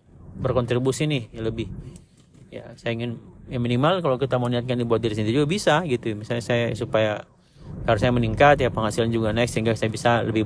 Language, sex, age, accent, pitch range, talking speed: Indonesian, male, 30-49, native, 115-140 Hz, 190 wpm